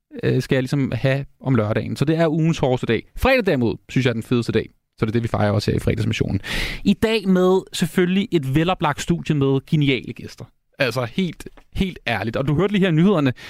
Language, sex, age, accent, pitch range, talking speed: Danish, male, 30-49, native, 120-160 Hz, 220 wpm